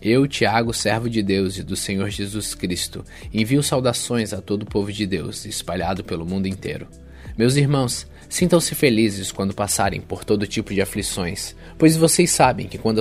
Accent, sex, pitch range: Brazilian, male, 95-130 Hz